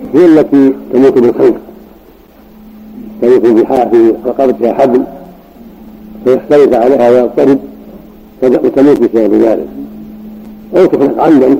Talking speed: 100 wpm